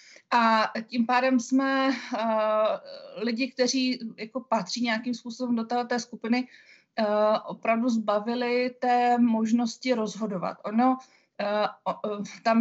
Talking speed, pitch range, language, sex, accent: 120 wpm, 215-245 Hz, Czech, female, native